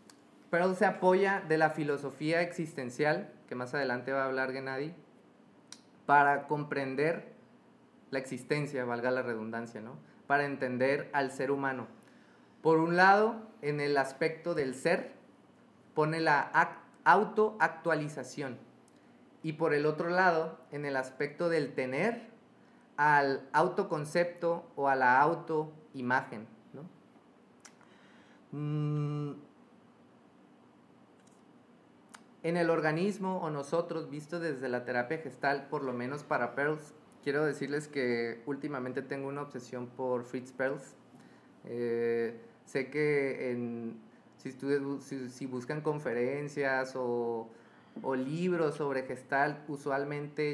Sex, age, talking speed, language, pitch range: male, 30-49, 115 wpm, Spanish, 130-155 Hz